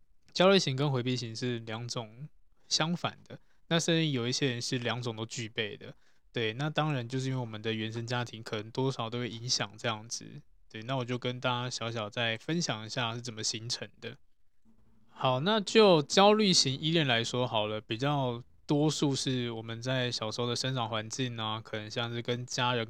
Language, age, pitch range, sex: Chinese, 20-39, 115-140 Hz, male